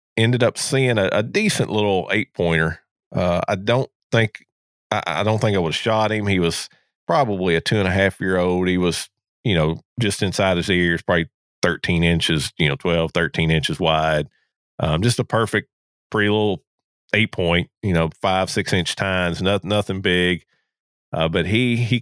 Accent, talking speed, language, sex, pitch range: American, 190 wpm, English, male, 85-110 Hz